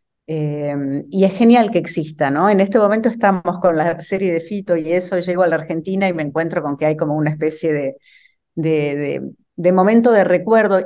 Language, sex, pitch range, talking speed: Spanish, female, 150-185 Hz, 200 wpm